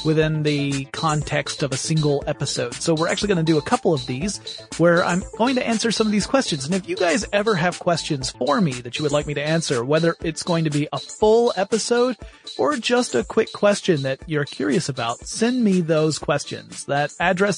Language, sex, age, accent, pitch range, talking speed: English, male, 30-49, American, 145-190 Hz, 220 wpm